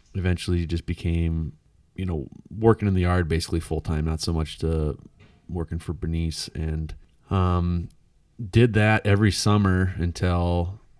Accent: American